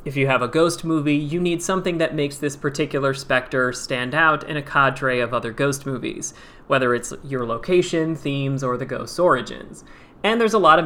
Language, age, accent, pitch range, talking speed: English, 30-49, American, 130-165 Hz, 205 wpm